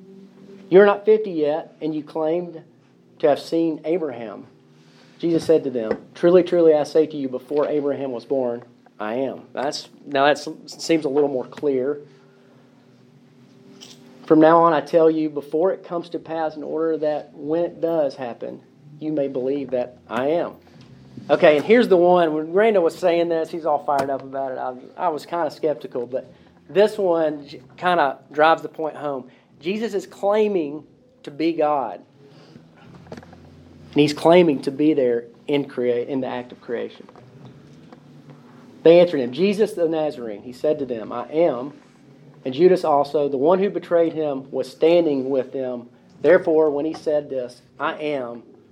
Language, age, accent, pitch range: English, 40-59, American, 130-165 Hz